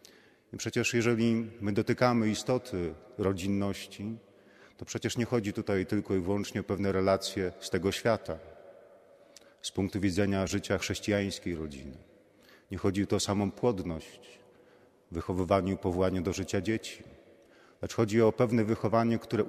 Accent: native